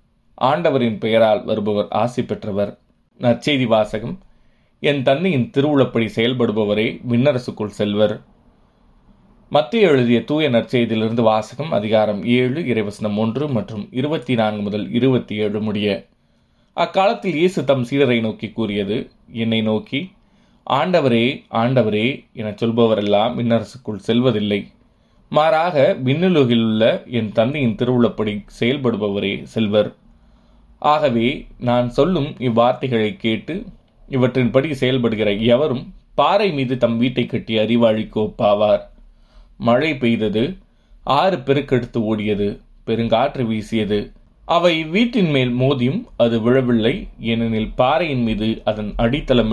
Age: 20-39